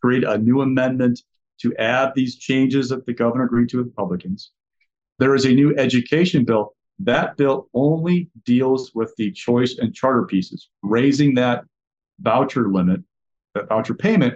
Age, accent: 40-59, American